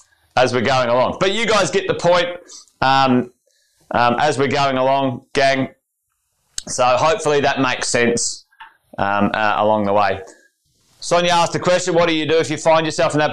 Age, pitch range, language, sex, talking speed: 30-49, 135-170 Hz, English, male, 185 wpm